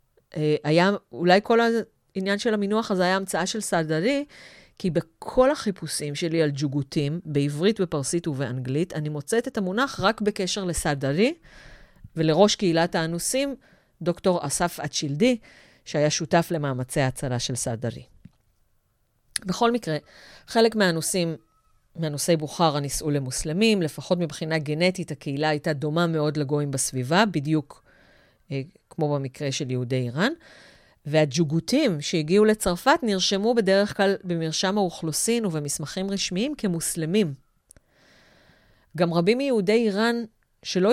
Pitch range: 150-200 Hz